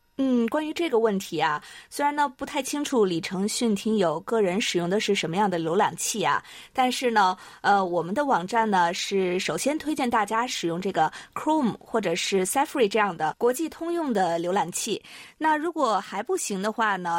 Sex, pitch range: female, 185-265 Hz